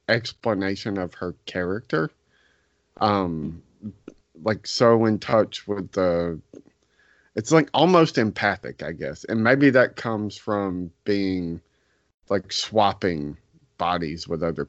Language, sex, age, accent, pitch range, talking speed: English, male, 30-49, American, 85-110 Hz, 115 wpm